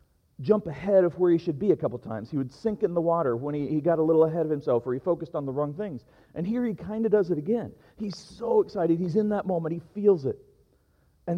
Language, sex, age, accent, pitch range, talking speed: English, male, 40-59, American, 140-180 Hz, 265 wpm